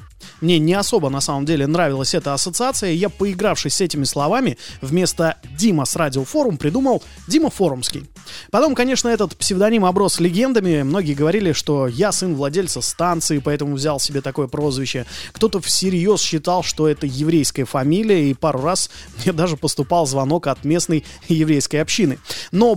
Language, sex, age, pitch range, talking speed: Russian, male, 20-39, 145-195 Hz, 155 wpm